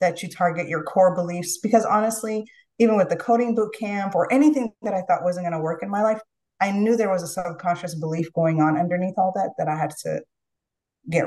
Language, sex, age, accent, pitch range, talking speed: English, female, 30-49, American, 170-215 Hz, 225 wpm